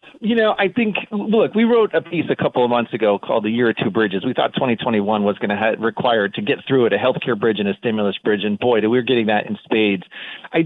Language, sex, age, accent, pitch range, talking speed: English, male, 40-59, American, 120-165 Hz, 265 wpm